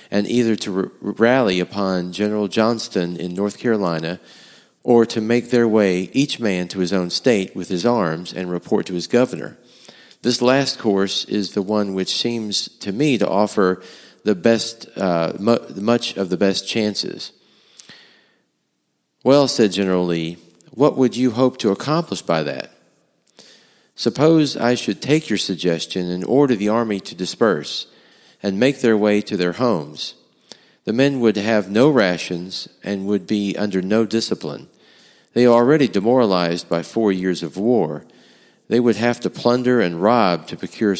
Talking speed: 165 wpm